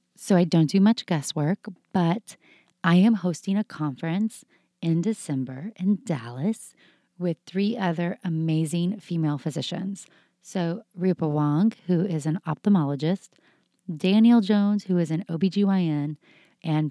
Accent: American